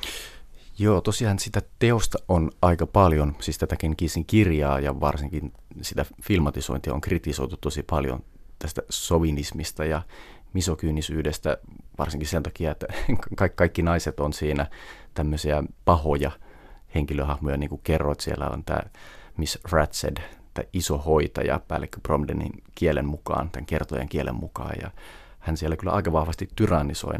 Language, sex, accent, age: Finnish, male, native, 30-49